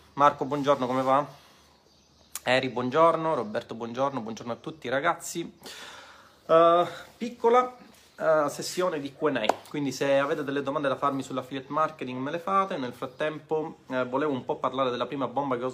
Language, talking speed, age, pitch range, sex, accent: Italian, 160 wpm, 30-49, 120-155 Hz, male, native